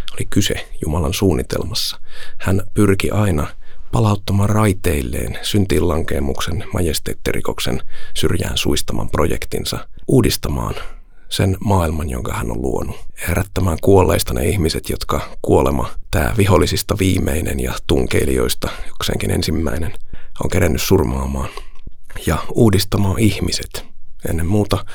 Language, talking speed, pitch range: Finnish, 100 wpm, 80-100 Hz